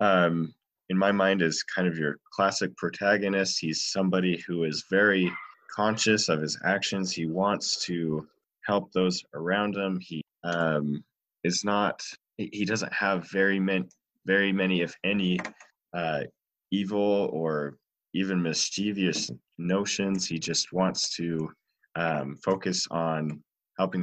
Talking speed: 130 wpm